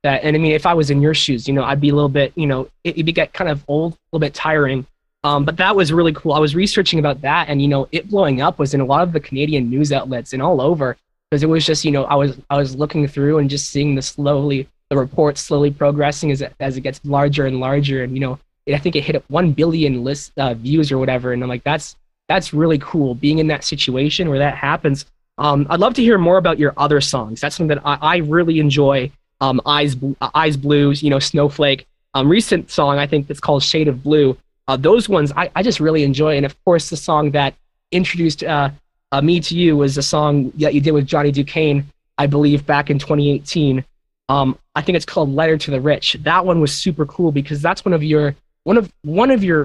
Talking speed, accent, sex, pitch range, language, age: 250 wpm, American, male, 140-160 Hz, English, 20-39